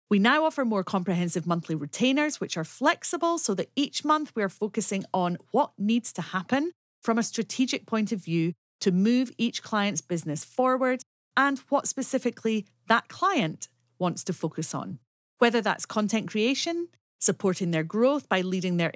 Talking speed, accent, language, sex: 170 wpm, British, English, female